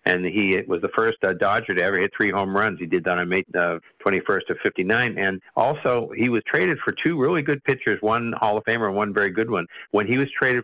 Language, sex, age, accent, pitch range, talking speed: English, male, 50-69, American, 95-110 Hz, 255 wpm